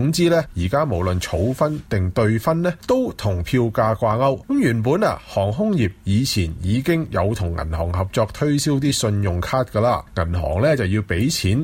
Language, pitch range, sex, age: Chinese, 105-160 Hz, male, 30-49